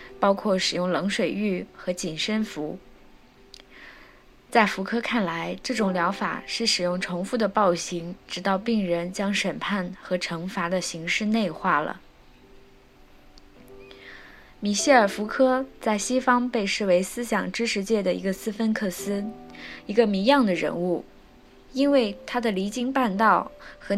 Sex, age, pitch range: female, 20-39, 175-230 Hz